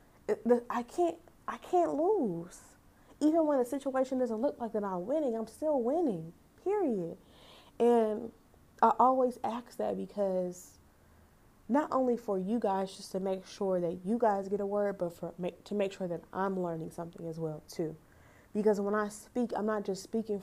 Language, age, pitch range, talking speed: English, 20-39, 185-230 Hz, 175 wpm